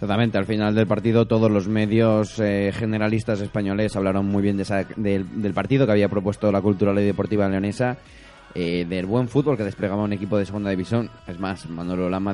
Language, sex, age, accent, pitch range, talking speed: Spanish, male, 20-39, Spanish, 100-120 Hz, 205 wpm